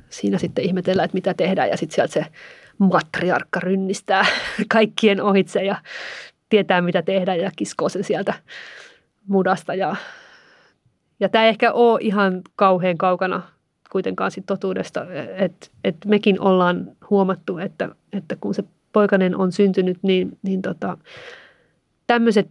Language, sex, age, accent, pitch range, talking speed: Finnish, female, 30-49, native, 185-215 Hz, 135 wpm